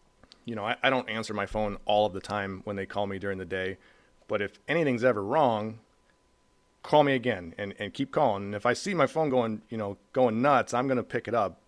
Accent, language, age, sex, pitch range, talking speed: American, English, 30-49, male, 100-115 Hz, 245 wpm